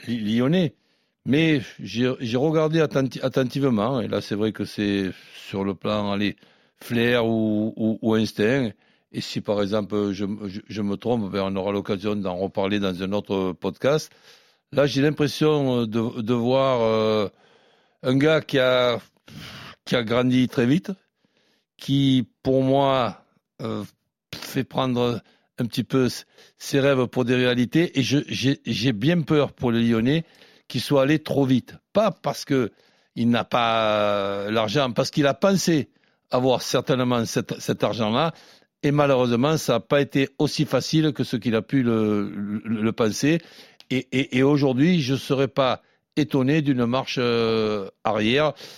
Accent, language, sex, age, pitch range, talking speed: French, French, male, 60-79, 110-135 Hz, 160 wpm